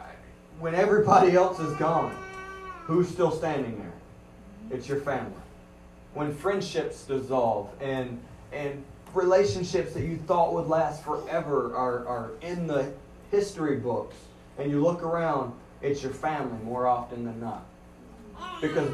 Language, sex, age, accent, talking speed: English, male, 30-49, American, 135 wpm